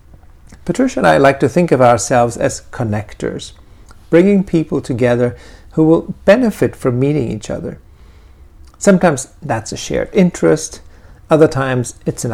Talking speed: 140 wpm